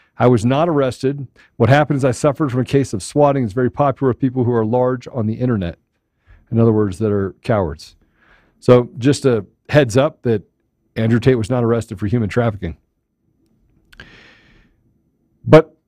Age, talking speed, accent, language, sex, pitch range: 40-59, 175 wpm, American, English, male, 120-170 Hz